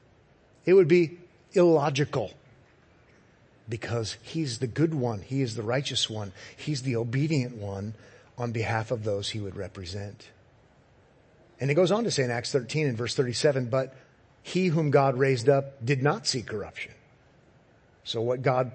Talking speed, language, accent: 160 wpm, English, American